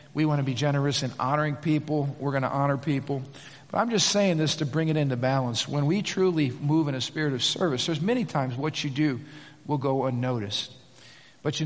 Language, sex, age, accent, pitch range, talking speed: English, male, 50-69, American, 140-170 Hz, 220 wpm